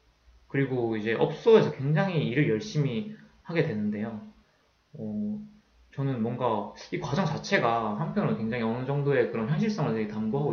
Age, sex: 20-39, male